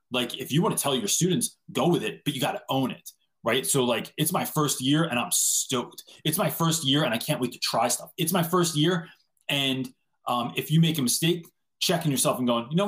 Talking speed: 255 wpm